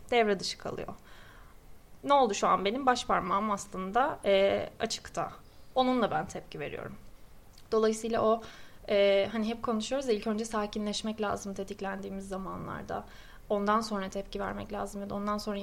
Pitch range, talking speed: 200-250 Hz, 145 wpm